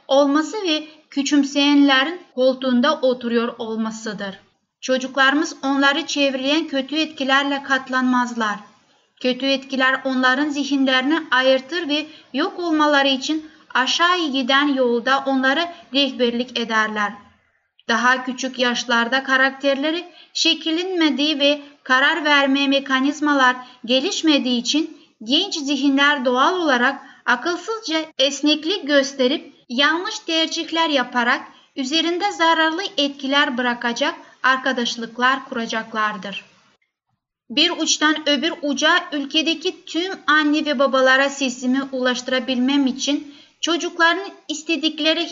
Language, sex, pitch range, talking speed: Turkish, female, 255-310 Hz, 90 wpm